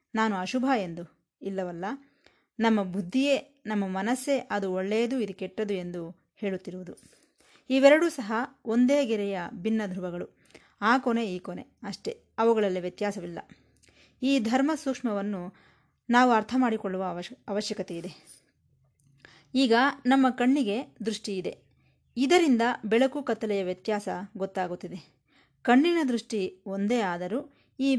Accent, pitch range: native, 190-255 Hz